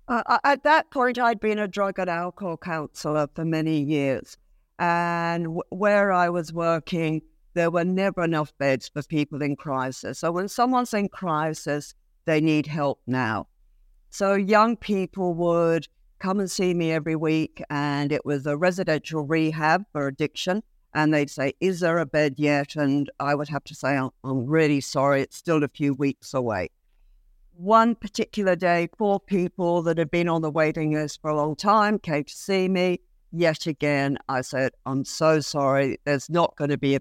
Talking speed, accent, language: 180 wpm, British, English